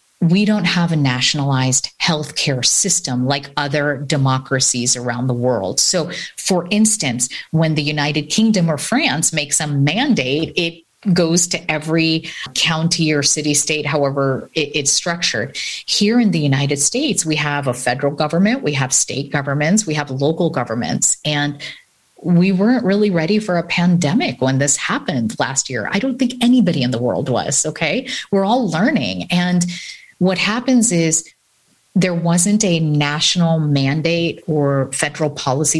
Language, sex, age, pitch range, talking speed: English, female, 30-49, 140-180 Hz, 155 wpm